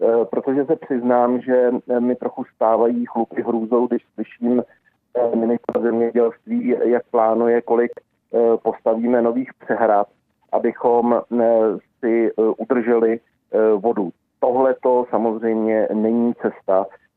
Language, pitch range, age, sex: Czech, 115-130 Hz, 40-59, male